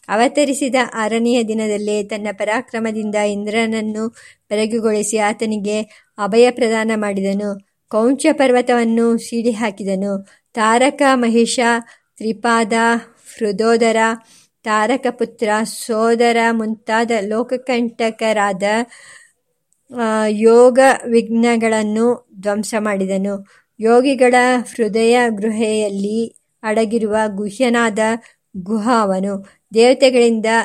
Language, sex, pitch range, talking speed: Kannada, male, 215-240 Hz, 65 wpm